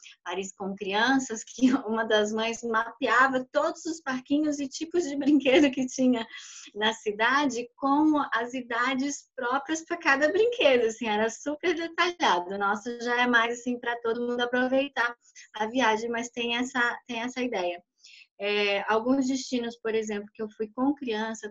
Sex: female